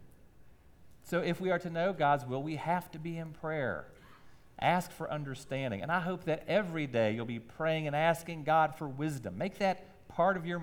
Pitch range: 125-180 Hz